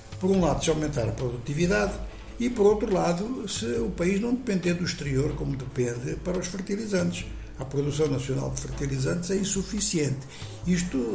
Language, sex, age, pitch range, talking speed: Portuguese, male, 60-79, 135-180 Hz, 165 wpm